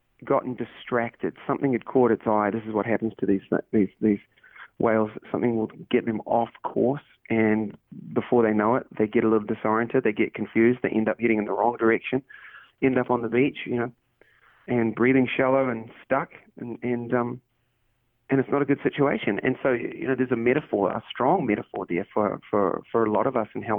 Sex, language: male, English